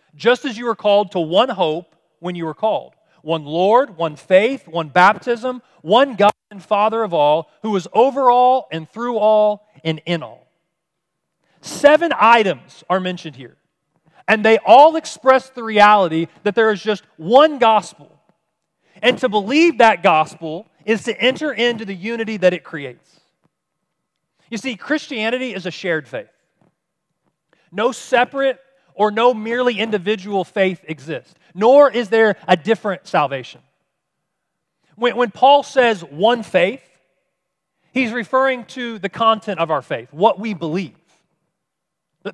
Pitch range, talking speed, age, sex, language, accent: 170-230 Hz, 145 wpm, 40-59, male, English, American